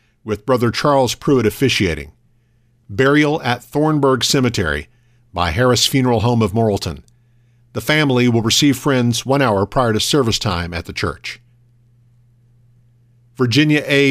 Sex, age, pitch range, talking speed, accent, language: male, 50-69, 115-135 Hz, 130 wpm, American, English